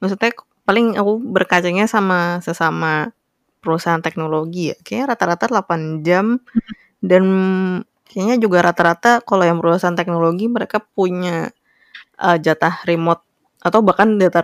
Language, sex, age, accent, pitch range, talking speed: Indonesian, female, 20-39, native, 165-190 Hz, 115 wpm